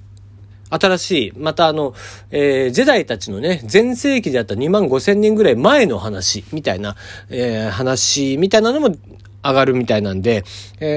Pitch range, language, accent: 100-165 Hz, Japanese, native